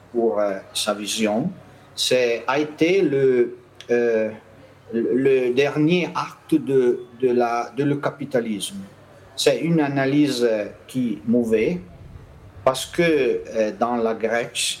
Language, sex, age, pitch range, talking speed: French, male, 50-69, 110-145 Hz, 115 wpm